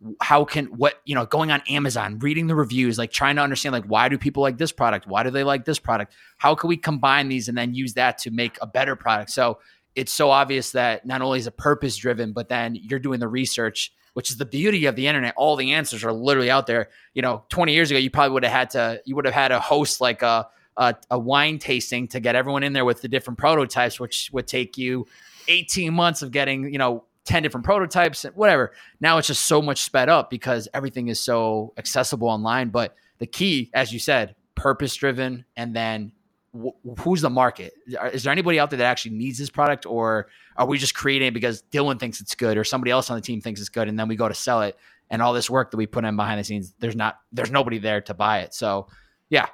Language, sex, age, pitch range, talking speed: English, male, 20-39, 115-140 Hz, 250 wpm